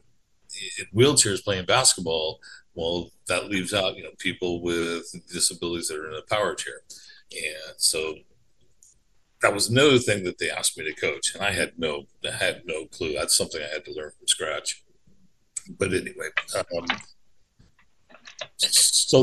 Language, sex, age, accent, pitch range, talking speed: English, male, 50-69, American, 90-125 Hz, 160 wpm